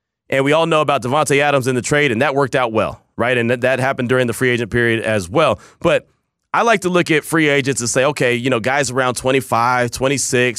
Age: 30-49